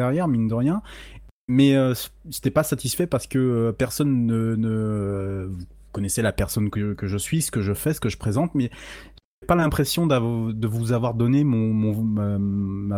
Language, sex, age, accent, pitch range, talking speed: French, male, 20-39, French, 100-125 Hz, 195 wpm